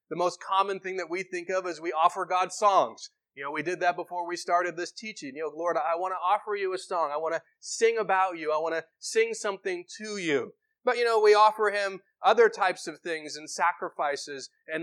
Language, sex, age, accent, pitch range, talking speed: English, male, 30-49, American, 160-220 Hz, 240 wpm